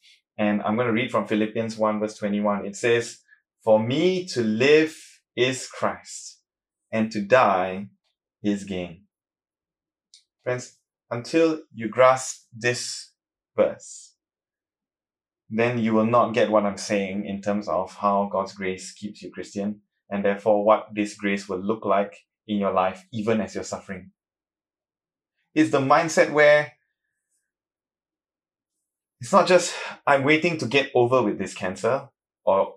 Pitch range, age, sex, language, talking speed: 105-140 Hz, 20-39, male, English, 140 wpm